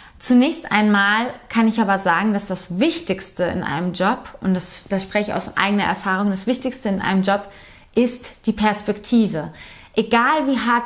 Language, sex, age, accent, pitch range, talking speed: German, female, 30-49, German, 195-240 Hz, 170 wpm